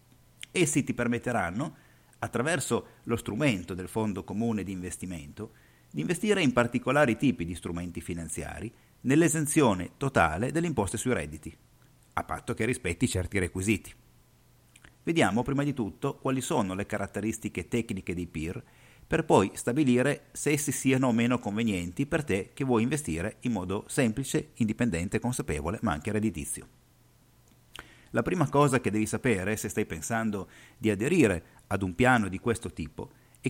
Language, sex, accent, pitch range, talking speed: Italian, male, native, 100-130 Hz, 145 wpm